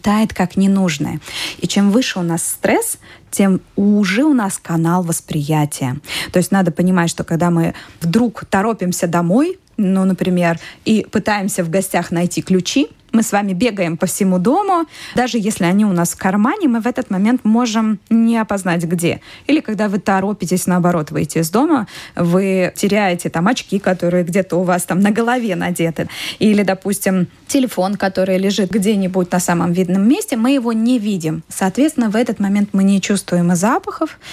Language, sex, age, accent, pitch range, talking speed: Russian, female, 20-39, native, 180-225 Hz, 170 wpm